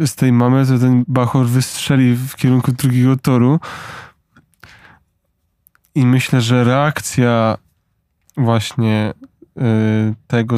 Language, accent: Polish, native